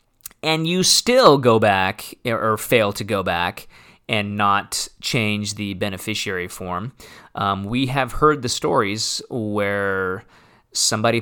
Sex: male